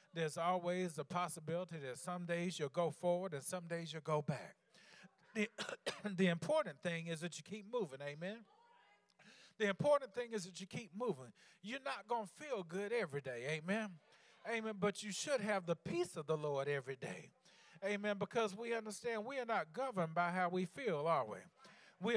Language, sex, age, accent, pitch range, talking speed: English, male, 40-59, American, 165-215 Hz, 190 wpm